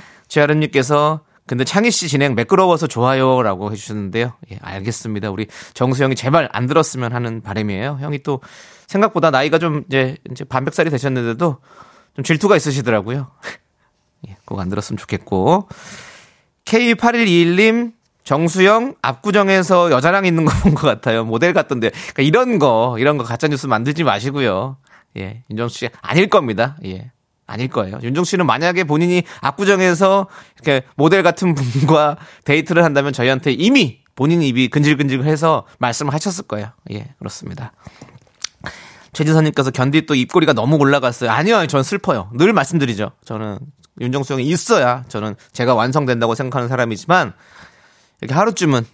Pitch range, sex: 120-165 Hz, male